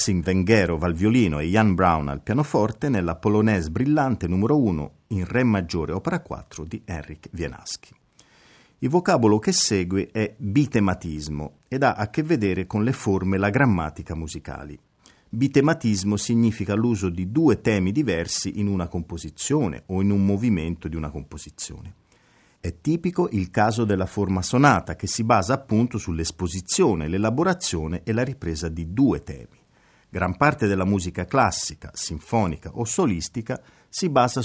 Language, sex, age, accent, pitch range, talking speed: Italian, male, 40-59, native, 85-120 Hz, 150 wpm